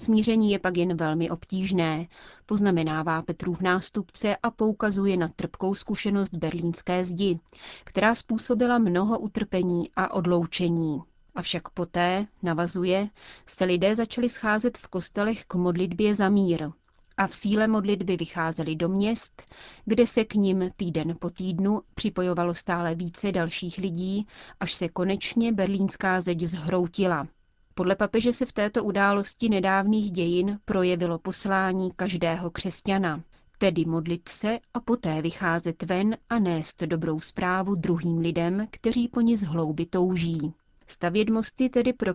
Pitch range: 170-205 Hz